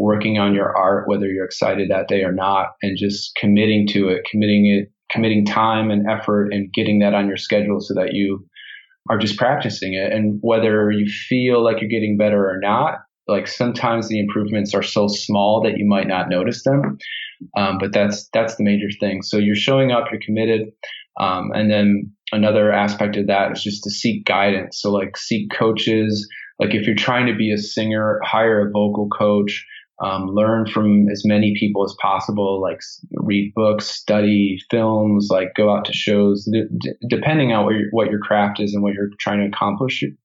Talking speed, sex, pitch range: 195 wpm, male, 100-110 Hz